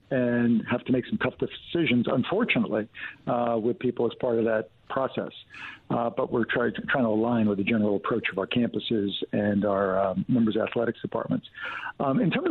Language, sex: English, male